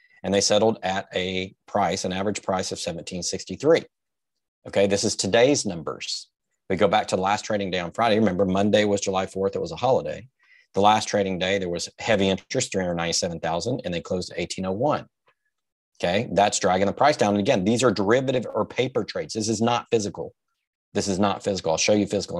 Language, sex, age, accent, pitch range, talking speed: English, male, 40-59, American, 95-110 Hz, 200 wpm